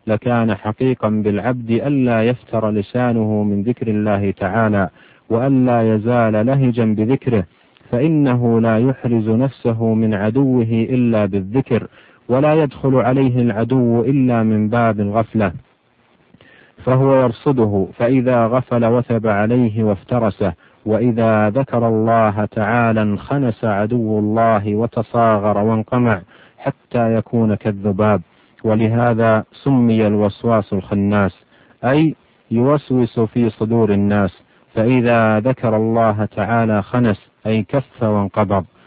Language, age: Arabic, 50-69